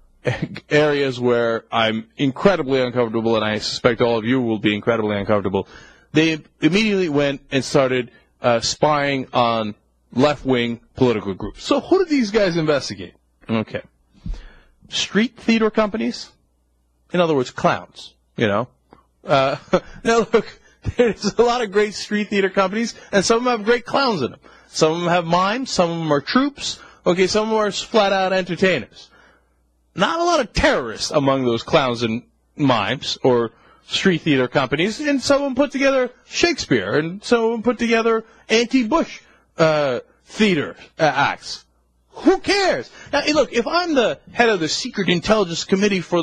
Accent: American